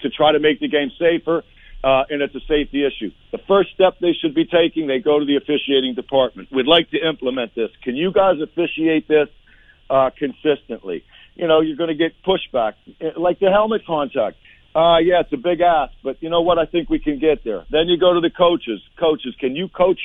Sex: male